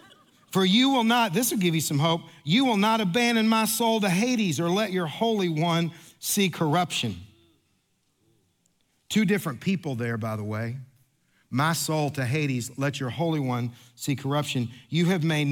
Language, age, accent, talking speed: English, 50-69, American, 175 wpm